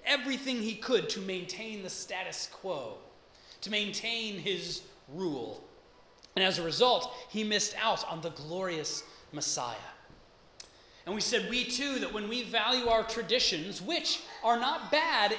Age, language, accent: 30-49, English, American